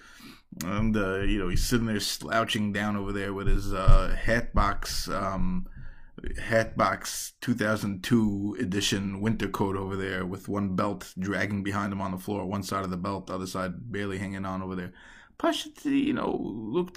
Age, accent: 20-39, American